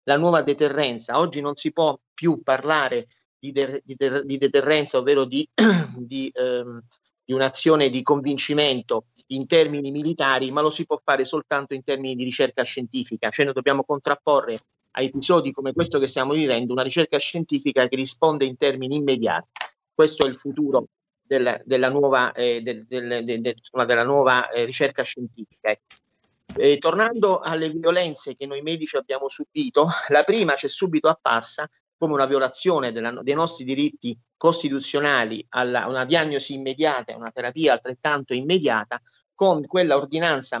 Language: Italian